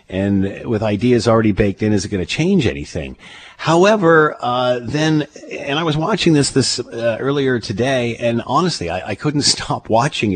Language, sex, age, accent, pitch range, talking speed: English, male, 50-69, American, 105-130 Hz, 180 wpm